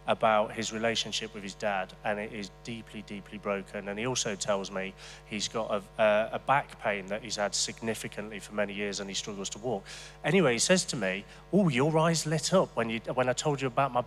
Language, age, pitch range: English, 30-49, 115-160 Hz